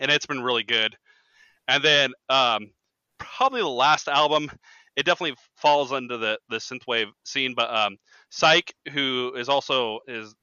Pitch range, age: 110-150 Hz, 30-49